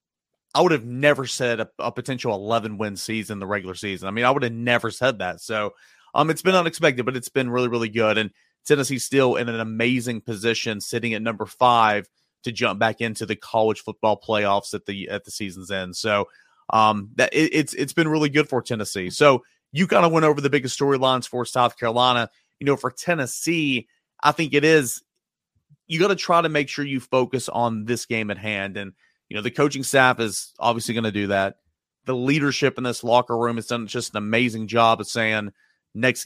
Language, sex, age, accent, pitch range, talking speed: English, male, 30-49, American, 110-135 Hz, 215 wpm